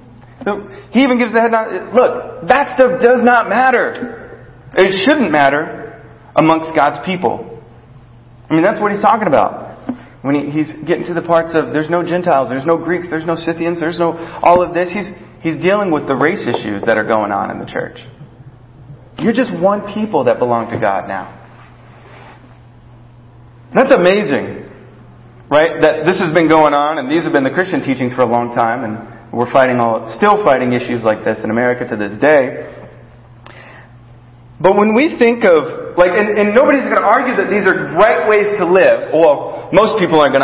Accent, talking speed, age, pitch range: American, 185 wpm, 30-49, 120-175 Hz